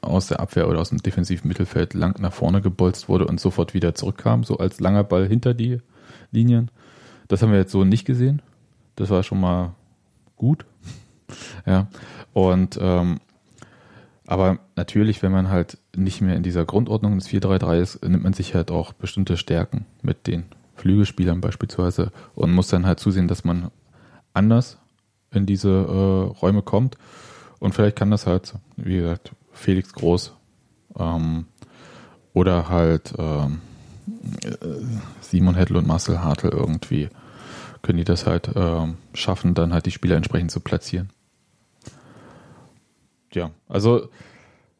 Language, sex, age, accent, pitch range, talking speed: German, male, 20-39, German, 90-110 Hz, 150 wpm